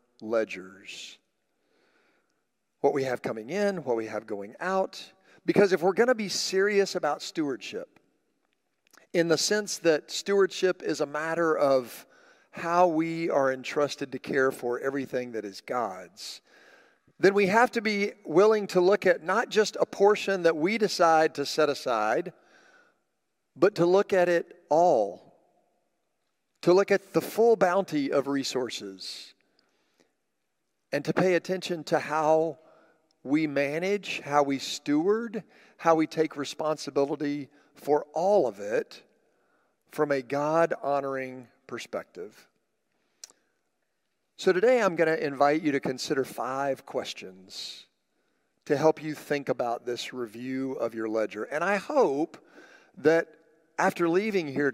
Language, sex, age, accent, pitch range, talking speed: English, male, 40-59, American, 135-190 Hz, 135 wpm